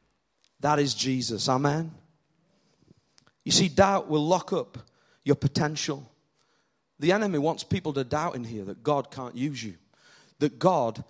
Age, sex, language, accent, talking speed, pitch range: 40-59, male, English, British, 145 wpm, 135-175 Hz